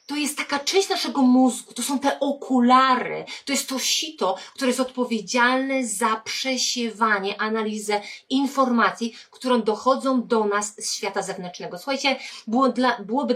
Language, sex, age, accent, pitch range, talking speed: Polish, female, 30-49, native, 210-250 Hz, 135 wpm